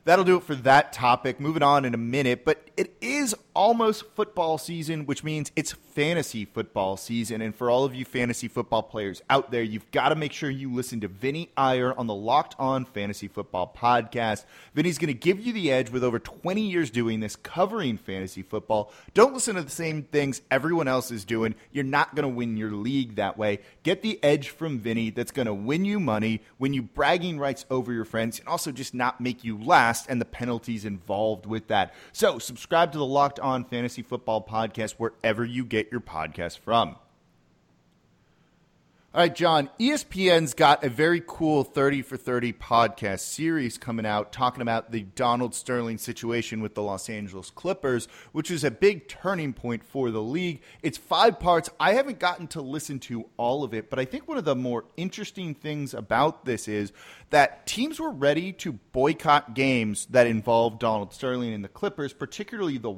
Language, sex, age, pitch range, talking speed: English, male, 30-49, 115-155 Hz, 195 wpm